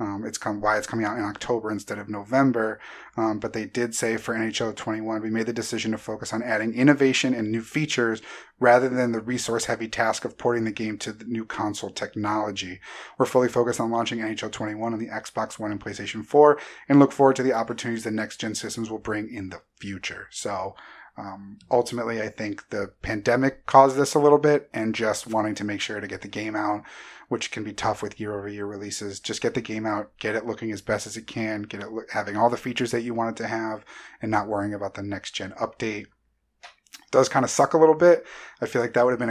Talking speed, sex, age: 235 wpm, male, 30-49